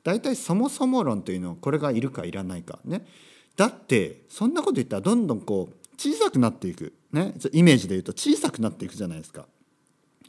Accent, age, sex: native, 40-59, male